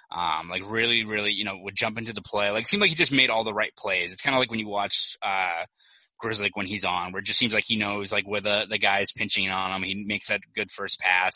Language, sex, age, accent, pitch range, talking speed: English, male, 20-39, American, 95-115 Hz, 285 wpm